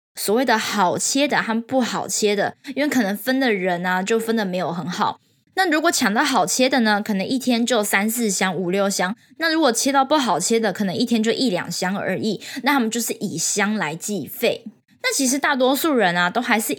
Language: Chinese